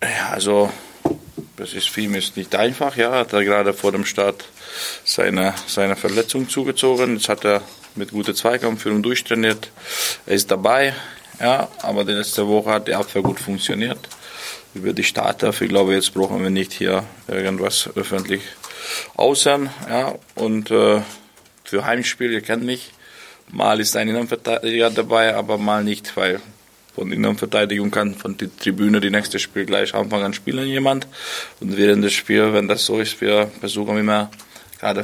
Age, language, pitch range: 20-39, German, 100-115 Hz